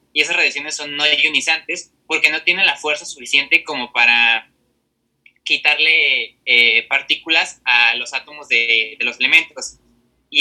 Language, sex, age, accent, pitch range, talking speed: Spanish, male, 20-39, Mexican, 130-180 Hz, 145 wpm